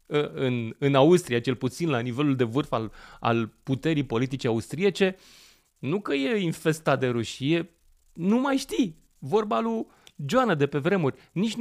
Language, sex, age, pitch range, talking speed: English, male, 30-49, 110-160 Hz, 155 wpm